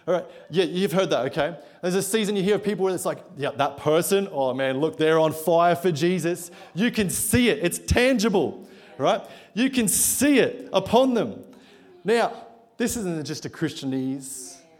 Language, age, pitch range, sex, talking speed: English, 30-49, 135-195 Hz, male, 185 wpm